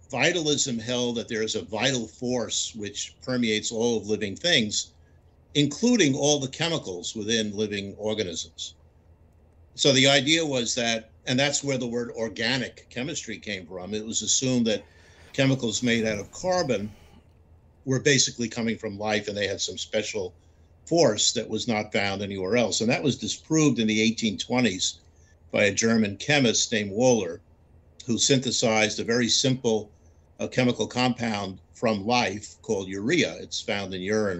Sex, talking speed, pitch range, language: male, 155 wpm, 85-120 Hz, English